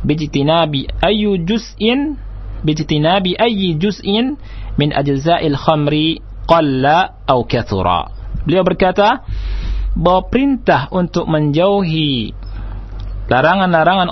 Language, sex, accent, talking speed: Indonesian, male, native, 60 wpm